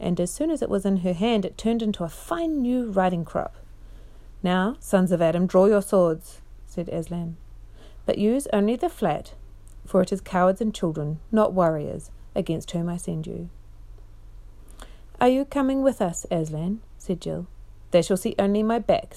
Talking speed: 180 wpm